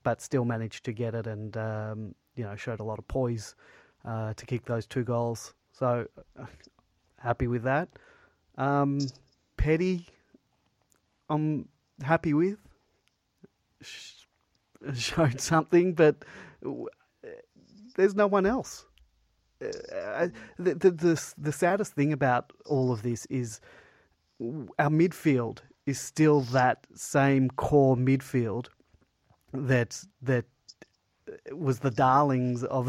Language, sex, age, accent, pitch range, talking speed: English, male, 30-49, Australian, 120-155 Hz, 115 wpm